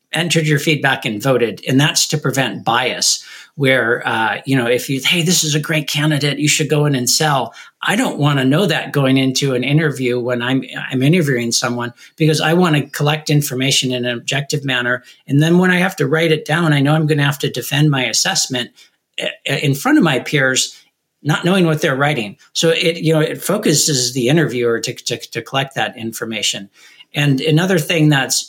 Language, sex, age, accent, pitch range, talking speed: English, male, 50-69, American, 125-155 Hz, 205 wpm